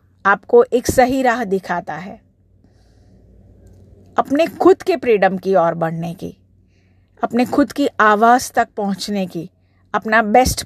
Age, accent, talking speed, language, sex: 50-69, native, 130 wpm, Hindi, female